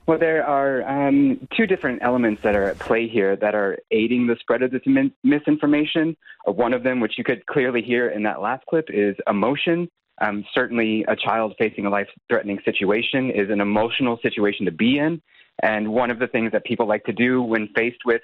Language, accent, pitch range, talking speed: English, American, 105-130 Hz, 205 wpm